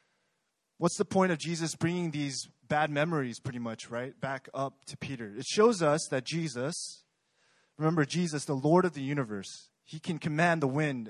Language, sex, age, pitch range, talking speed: English, male, 20-39, 140-180 Hz, 180 wpm